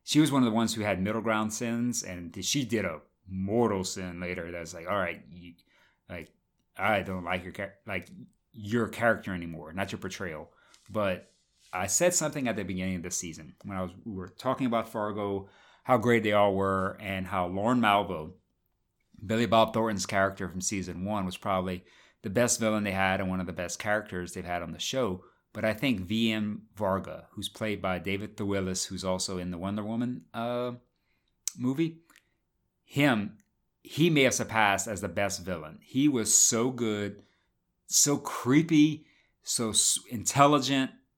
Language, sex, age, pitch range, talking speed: English, male, 30-49, 95-115 Hz, 175 wpm